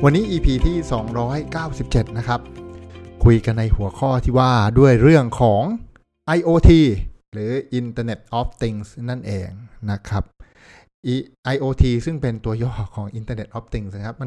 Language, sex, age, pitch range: Thai, male, 60-79, 105-135 Hz